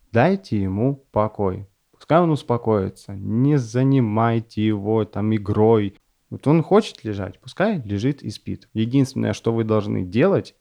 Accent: native